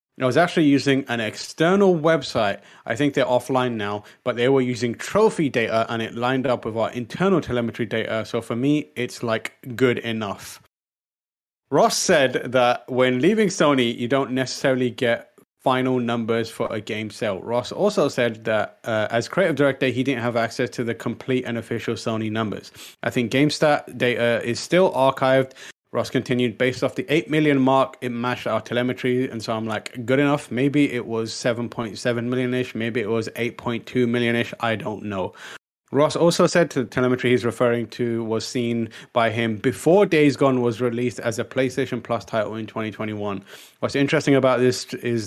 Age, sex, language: 30-49, male, English